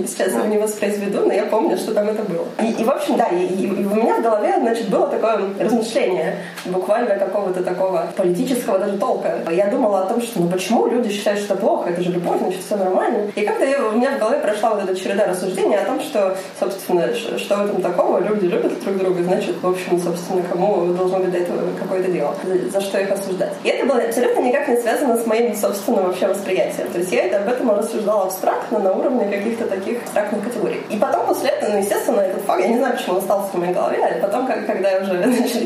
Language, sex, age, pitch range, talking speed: Russian, female, 20-39, 185-230 Hz, 230 wpm